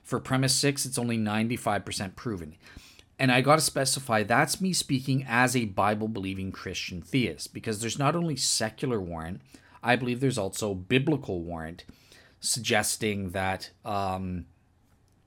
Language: English